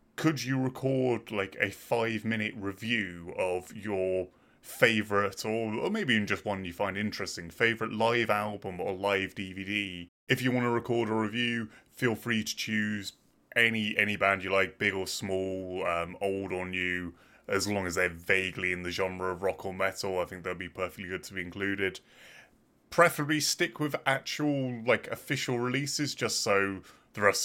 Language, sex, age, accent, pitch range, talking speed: English, male, 20-39, British, 90-110 Hz, 175 wpm